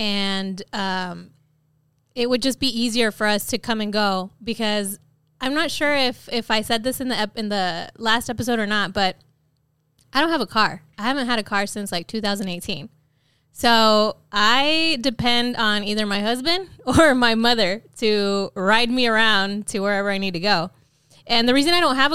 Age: 20-39